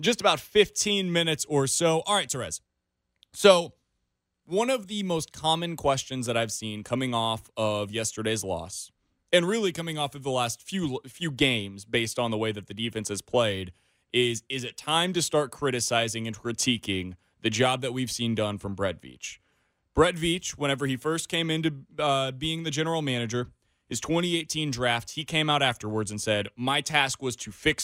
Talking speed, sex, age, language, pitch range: 190 wpm, male, 20-39, English, 110-155 Hz